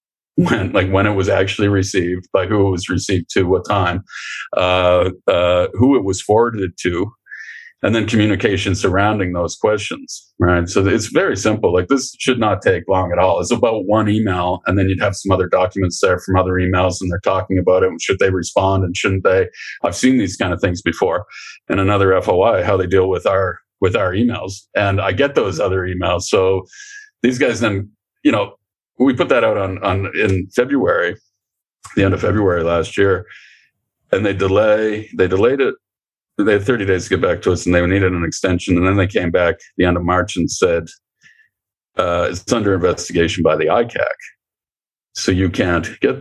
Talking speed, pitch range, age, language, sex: 200 wpm, 90-105 Hz, 40-59, English, male